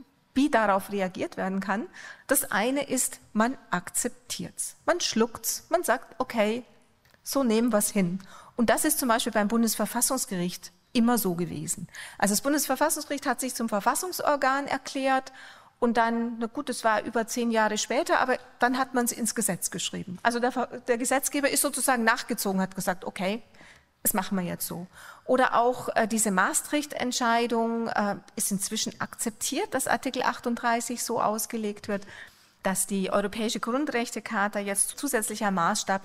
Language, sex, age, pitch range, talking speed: German, female, 40-59, 205-260 Hz, 155 wpm